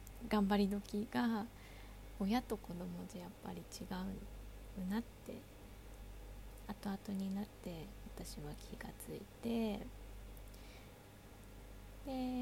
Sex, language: female, Japanese